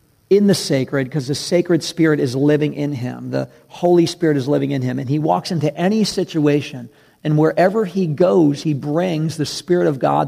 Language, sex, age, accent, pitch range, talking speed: English, male, 50-69, American, 145-175 Hz, 200 wpm